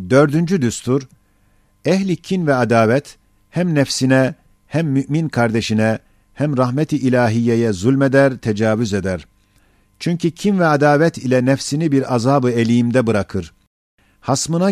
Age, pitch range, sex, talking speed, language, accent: 50-69, 105-140 Hz, male, 110 wpm, Turkish, native